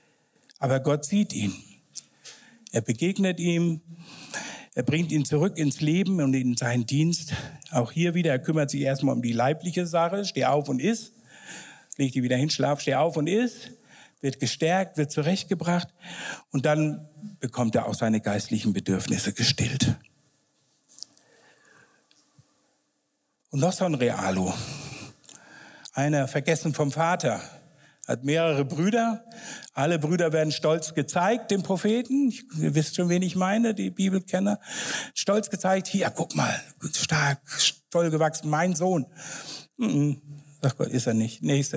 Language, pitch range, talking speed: German, 135-185 Hz, 140 wpm